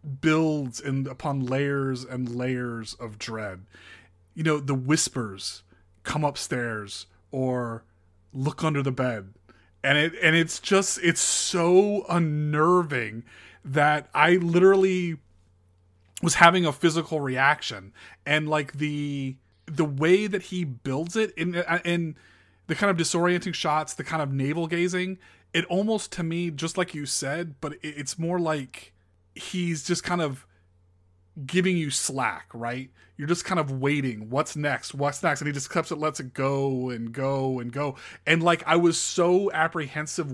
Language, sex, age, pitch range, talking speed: English, male, 30-49, 125-165 Hz, 155 wpm